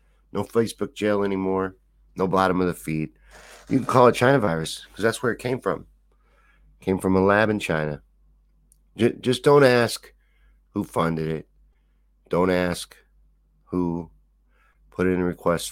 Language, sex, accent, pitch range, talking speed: English, male, American, 80-100 Hz, 155 wpm